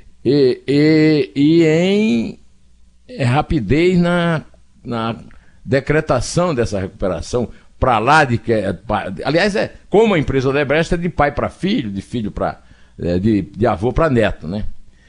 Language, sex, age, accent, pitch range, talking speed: Portuguese, male, 60-79, Brazilian, 95-155 Hz, 150 wpm